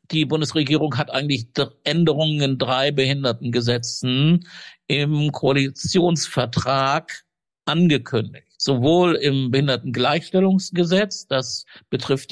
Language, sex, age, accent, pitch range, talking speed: German, male, 50-69, German, 125-165 Hz, 85 wpm